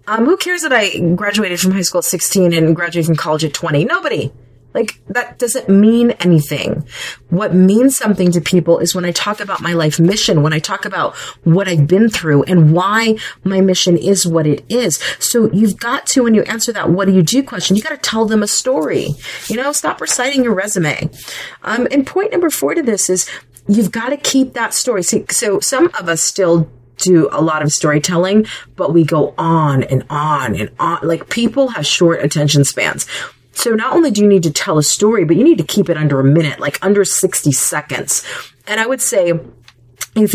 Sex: female